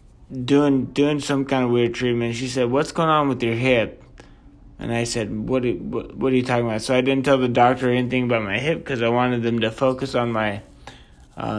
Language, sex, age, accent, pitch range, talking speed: English, male, 20-39, American, 110-135 Hz, 230 wpm